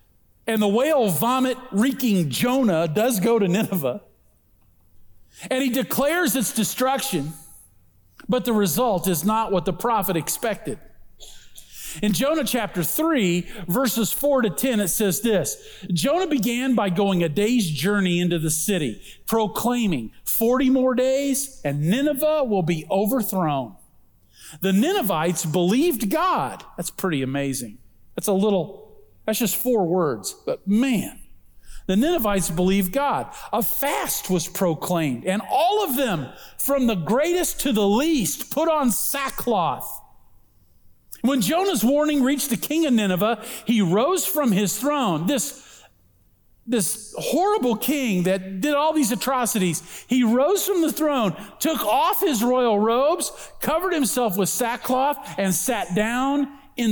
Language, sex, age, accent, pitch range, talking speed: English, male, 50-69, American, 180-265 Hz, 140 wpm